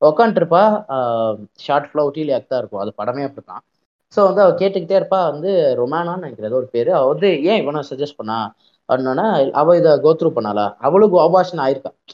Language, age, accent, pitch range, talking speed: Tamil, 20-39, native, 125-180 Hz, 165 wpm